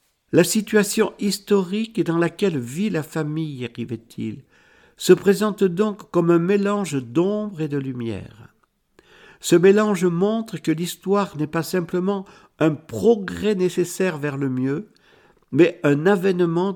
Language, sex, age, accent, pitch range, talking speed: French, male, 60-79, French, 135-190 Hz, 130 wpm